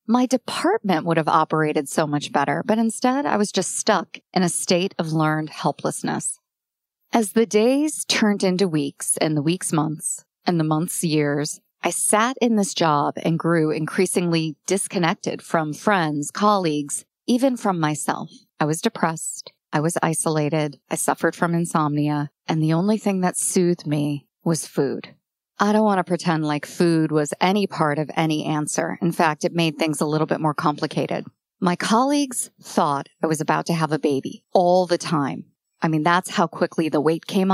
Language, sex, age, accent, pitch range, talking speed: English, female, 40-59, American, 155-200 Hz, 180 wpm